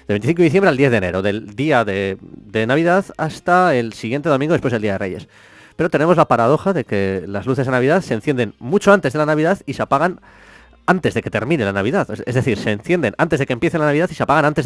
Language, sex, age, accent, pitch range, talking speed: English, male, 20-39, Spanish, 110-160 Hz, 260 wpm